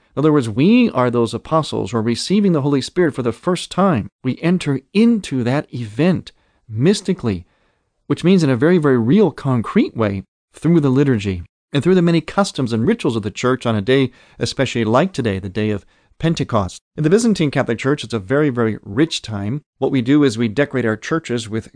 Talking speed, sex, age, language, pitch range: 205 wpm, male, 40-59, English, 110-145 Hz